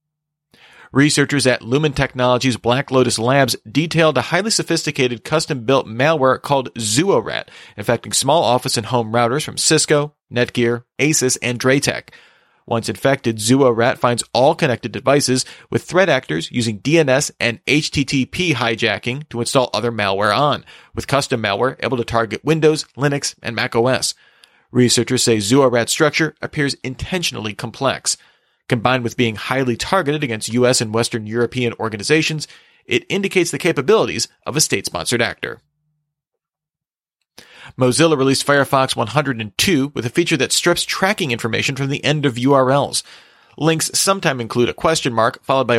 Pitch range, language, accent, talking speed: 120-150 Hz, English, American, 140 wpm